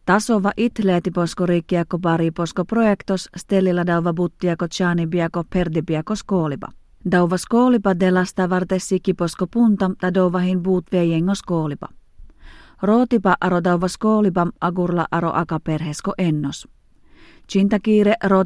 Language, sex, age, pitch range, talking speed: Finnish, female, 30-49, 170-195 Hz, 100 wpm